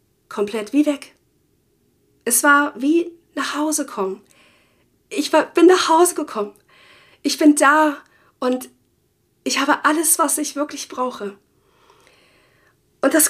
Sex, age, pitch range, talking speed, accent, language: female, 40-59, 220-300 Hz, 125 wpm, German, German